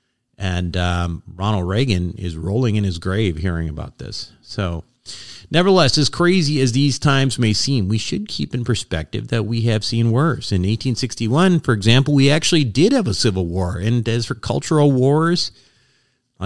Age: 50-69